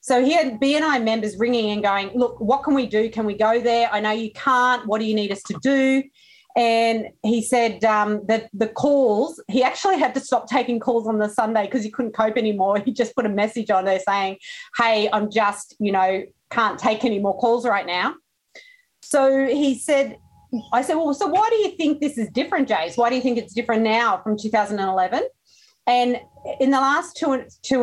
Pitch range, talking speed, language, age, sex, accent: 215-270 Hz, 220 wpm, English, 30-49, female, Australian